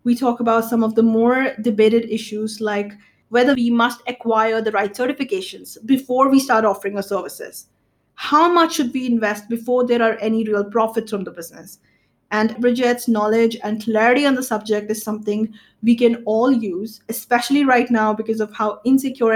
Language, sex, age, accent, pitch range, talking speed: English, female, 20-39, Indian, 215-250 Hz, 180 wpm